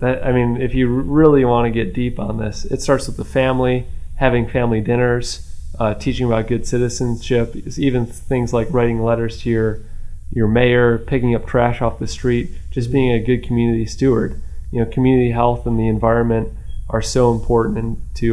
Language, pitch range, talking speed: English, 110-125 Hz, 185 wpm